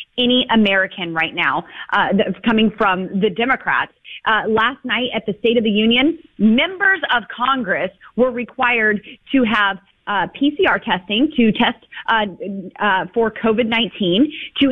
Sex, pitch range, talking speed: female, 195-255 Hz, 145 wpm